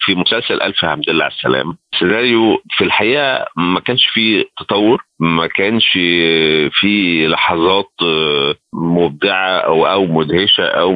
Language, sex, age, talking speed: Arabic, male, 50-69, 120 wpm